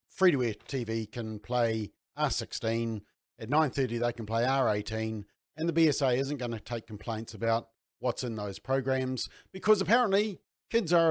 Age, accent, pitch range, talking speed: 50-69, Australian, 115-155 Hz, 150 wpm